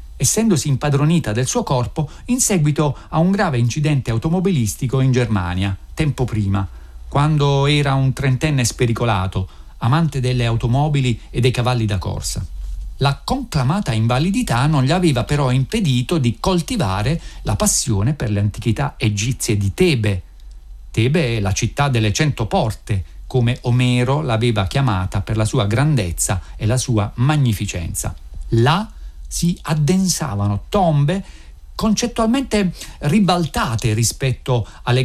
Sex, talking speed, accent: male, 125 wpm, native